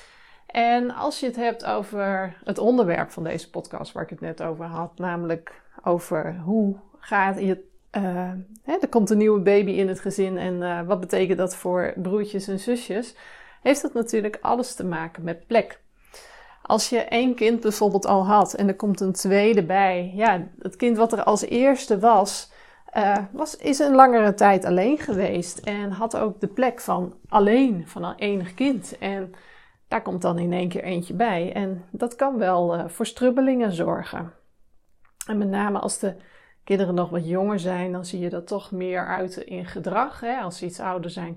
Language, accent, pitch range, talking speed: Dutch, Dutch, 180-230 Hz, 185 wpm